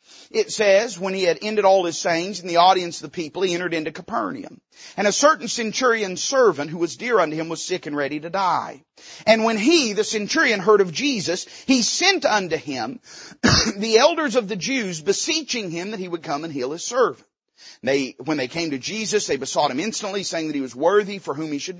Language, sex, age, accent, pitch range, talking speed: English, male, 40-59, American, 170-235 Hz, 225 wpm